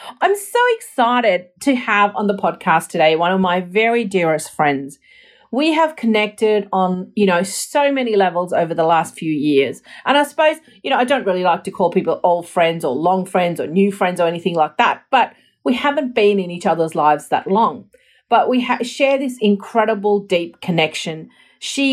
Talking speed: 195 wpm